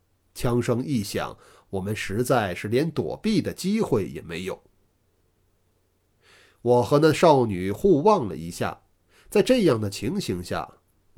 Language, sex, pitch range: Chinese, male, 95-155 Hz